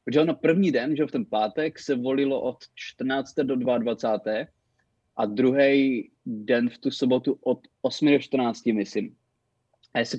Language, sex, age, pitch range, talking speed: Czech, male, 20-39, 125-155 Hz, 165 wpm